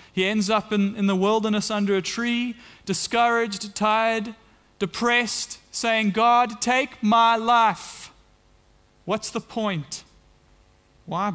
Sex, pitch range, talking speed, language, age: male, 130-185 Hz, 115 wpm, English, 30-49